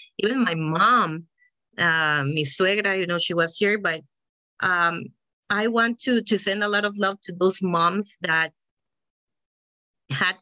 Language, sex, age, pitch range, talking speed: English, female, 30-49, 155-200 Hz, 155 wpm